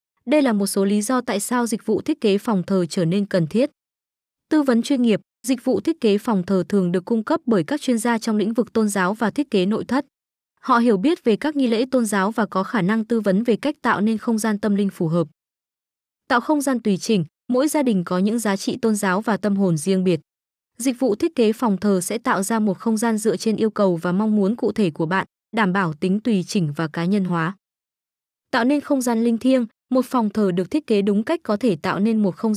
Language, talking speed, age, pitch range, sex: Vietnamese, 260 wpm, 20-39, 195-245 Hz, female